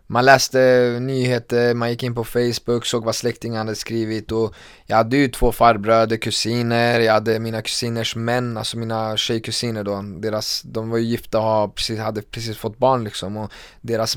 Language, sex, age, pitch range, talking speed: Swedish, male, 20-39, 105-120 Hz, 170 wpm